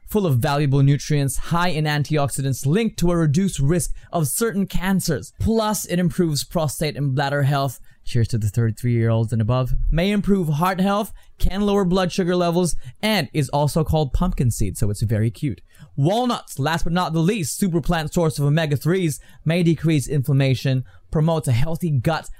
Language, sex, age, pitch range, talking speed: English, male, 20-39, 125-175 Hz, 180 wpm